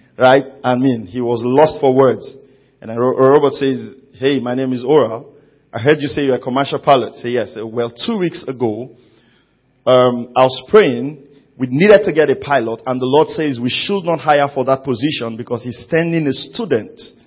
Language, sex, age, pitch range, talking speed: English, male, 40-59, 125-165 Hz, 210 wpm